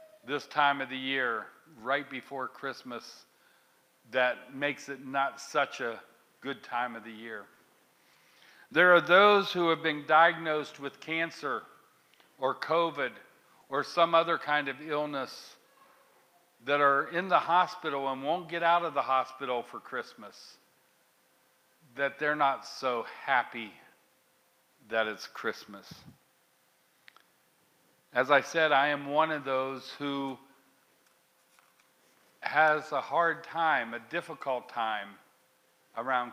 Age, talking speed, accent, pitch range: 50-69, 125 wpm, American, 135-165 Hz